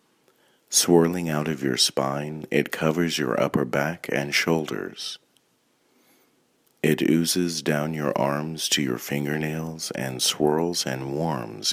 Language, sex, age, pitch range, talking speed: English, male, 40-59, 70-80 Hz, 125 wpm